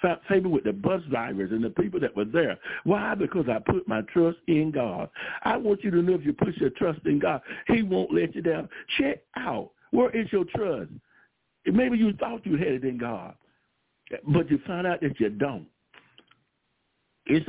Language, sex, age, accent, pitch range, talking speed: English, male, 60-79, American, 160-225 Hz, 200 wpm